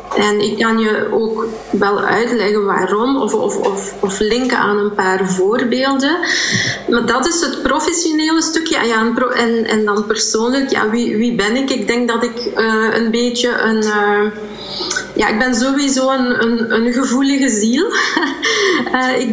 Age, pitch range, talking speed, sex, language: 20-39, 220-265 Hz, 165 wpm, female, Dutch